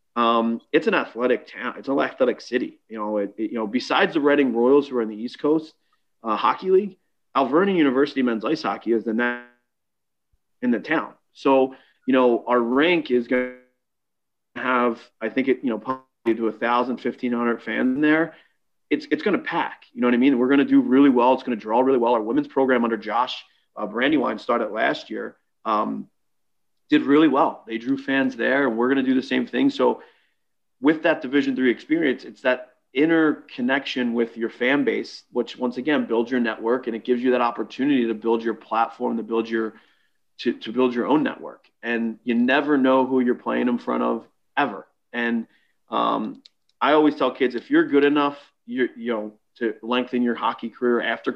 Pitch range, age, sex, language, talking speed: 115-140 Hz, 30-49, male, English, 205 wpm